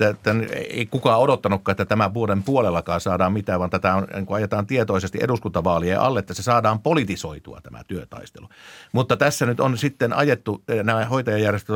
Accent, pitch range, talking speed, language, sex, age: native, 100-120 Hz, 155 wpm, Finnish, male, 50-69